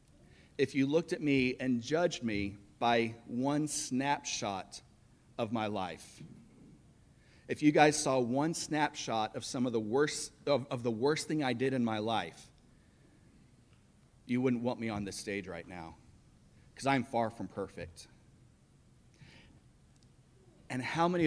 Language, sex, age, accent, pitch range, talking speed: English, male, 40-59, American, 110-145 Hz, 145 wpm